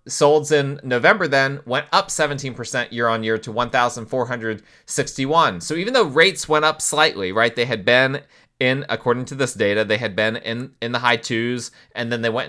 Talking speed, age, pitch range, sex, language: 190 wpm, 30-49, 115-140 Hz, male, English